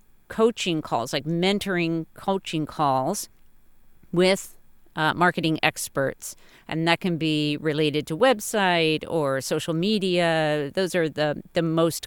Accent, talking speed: American, 125 wpm